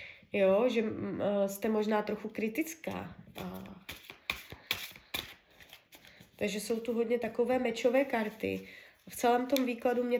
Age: 20-39